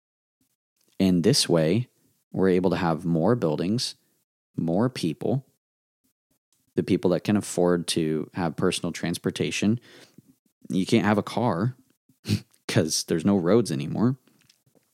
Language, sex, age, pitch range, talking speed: English, male, 20-39, 80-105 Hz, 120 wpm